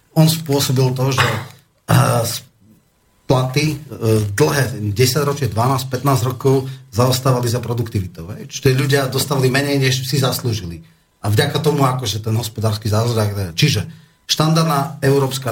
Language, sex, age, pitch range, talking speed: Slovak, male, 30-49, 120-140 Hz, 130 wpm